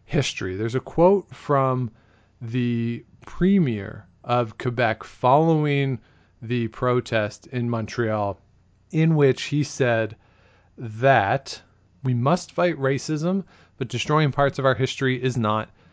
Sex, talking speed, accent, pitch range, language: male, 115 wpm, American, 115-160 Hz, English